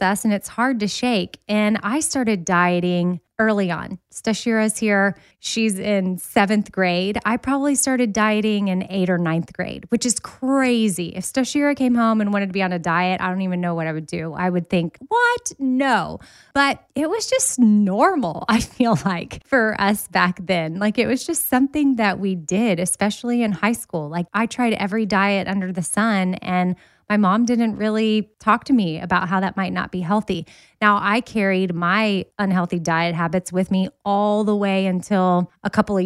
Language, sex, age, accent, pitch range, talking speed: English, female, 20-39, American, 180-220 Hz, 195 wpm